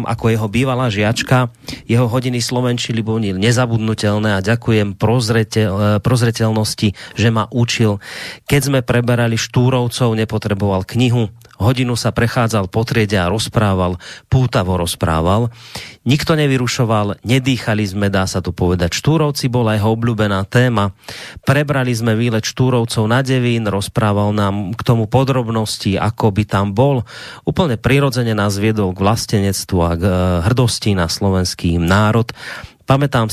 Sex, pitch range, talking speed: male, 100-120 Hz, 130 wpm